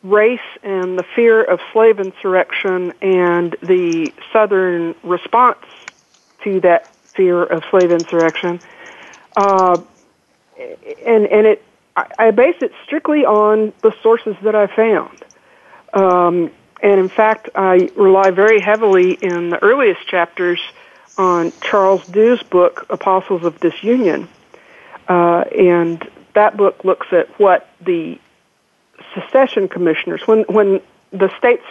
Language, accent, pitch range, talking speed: English, American, 180-240 Hz, 120 wpm